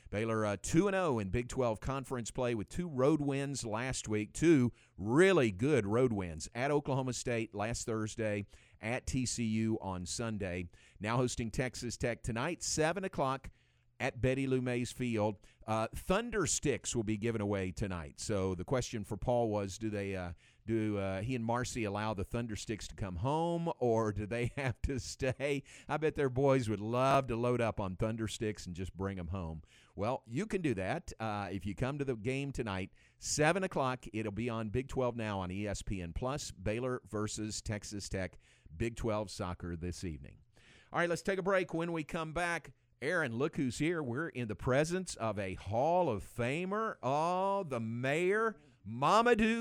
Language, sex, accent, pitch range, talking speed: English, male, American, 105-140 Hz, 185 wpm